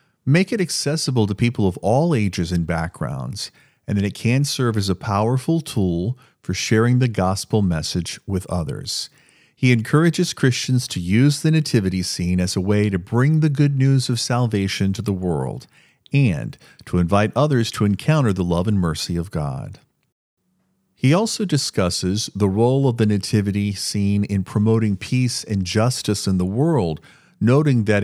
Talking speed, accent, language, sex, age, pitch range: 165 wpm, American, English, male, 40-59, 95-130 Hz